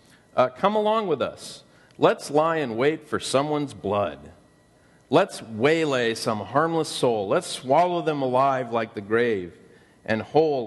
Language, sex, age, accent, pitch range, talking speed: English, male, 40-59, American, 120-200 Hz, 145 wpm